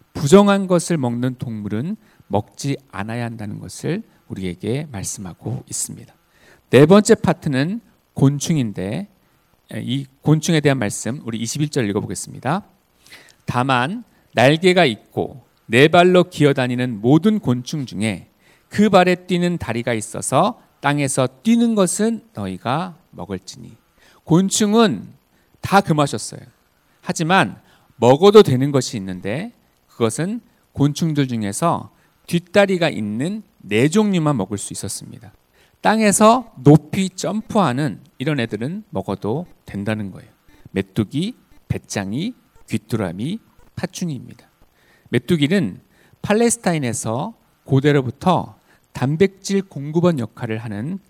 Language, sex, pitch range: Korean, male, 120-185 Hz